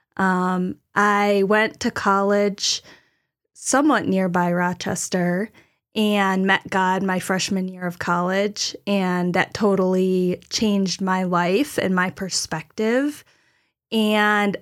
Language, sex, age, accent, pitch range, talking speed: English, female, 10-29, American, 185-220 Hz, 105 wpm